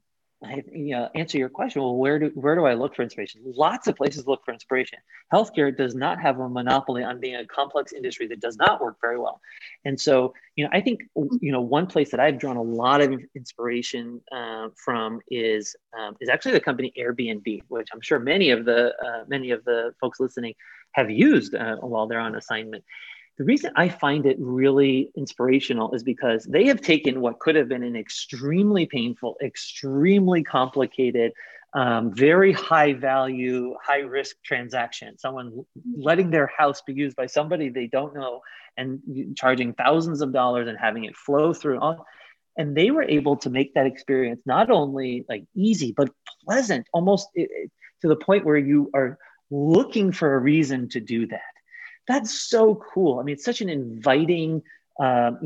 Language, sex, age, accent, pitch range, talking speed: English, male, 30-49, American, 125-155 Hz, 185 wpm